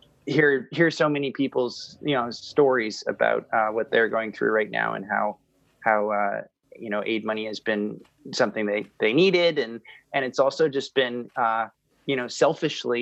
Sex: male